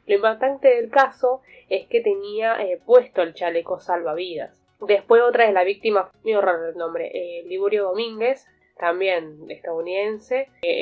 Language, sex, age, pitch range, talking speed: Spanish, female, 10-29, 175-245 Hz, 150 wpm